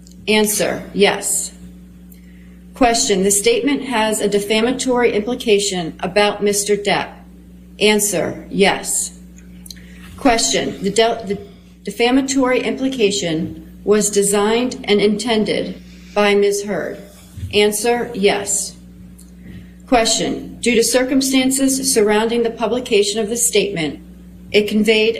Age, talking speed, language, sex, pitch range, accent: 40-59, 95 wpm, English, female, 175-225 Hz, American